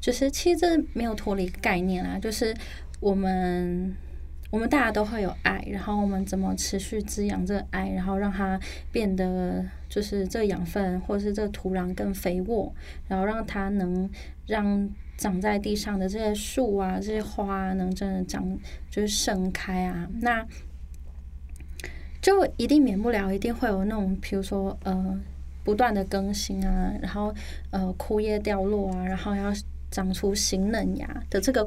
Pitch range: 180-210 Hz